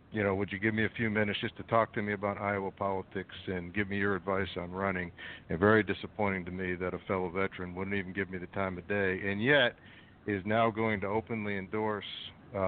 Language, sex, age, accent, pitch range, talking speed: English, male, 60-79, American, 95-115 Hz, 235 wpm